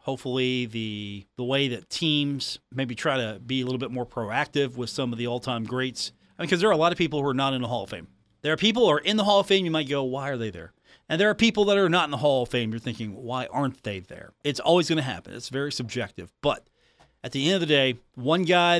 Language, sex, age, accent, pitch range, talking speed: English, male, 40-59, American, 120-155 Hz, 285 wpm